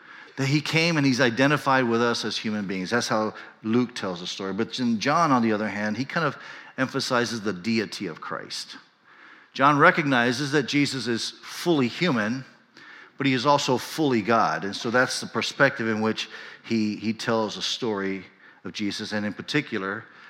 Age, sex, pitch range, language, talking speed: 50-69, male, 110-135 Hz, English, 180 wpm